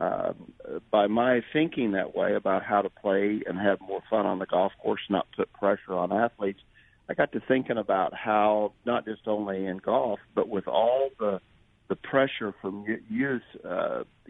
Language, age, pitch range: English, 50-69, 100-120 Hz